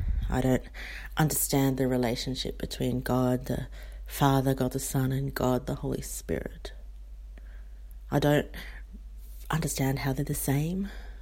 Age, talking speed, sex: 30-49, 130 wpm, female